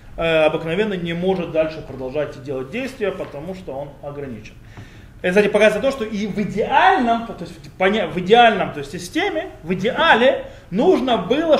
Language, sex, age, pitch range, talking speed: Russian, male, 20-39, 150-225 Hz, 160 wpm